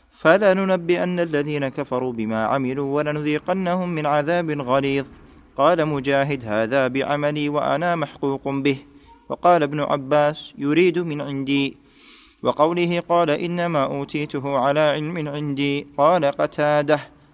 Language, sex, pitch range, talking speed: Arabic, male, 135-150 Hz, 115 wpm